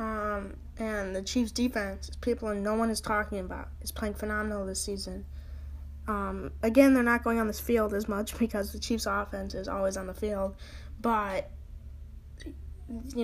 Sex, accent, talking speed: female, American, 170 wpm